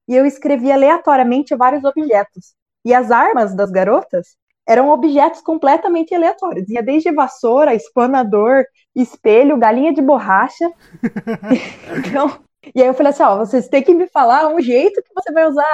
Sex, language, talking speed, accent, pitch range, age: female, Portuguese, 155 wpm, Brazilian, 240-340 Hz, 20-39